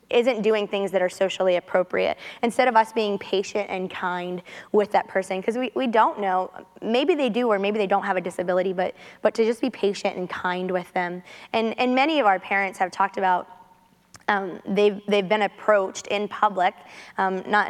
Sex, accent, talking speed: female, American, 205 wpm